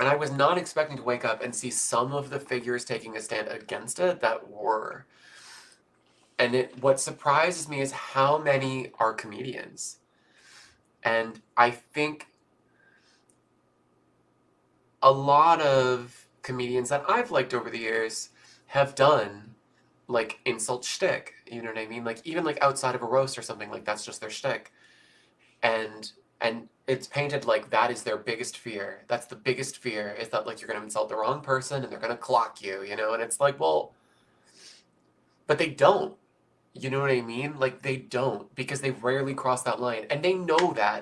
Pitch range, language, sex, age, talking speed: 115-140 Hz, English, male, 20-39, 185 wpm